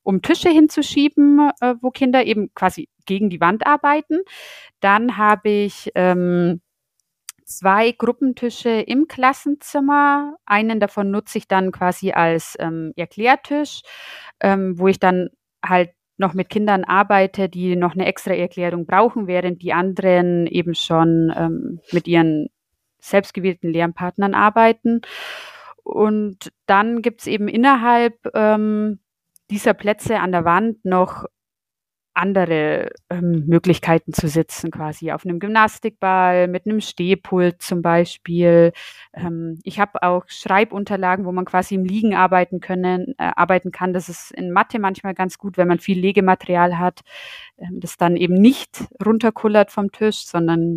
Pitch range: 175-215 Hz